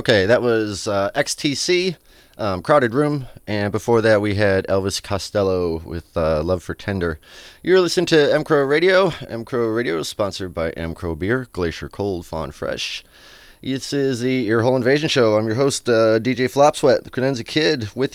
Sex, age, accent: male, 30-49, American